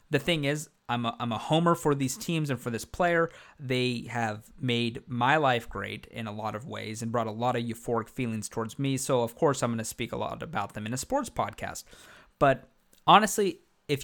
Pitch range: 110-130 Hz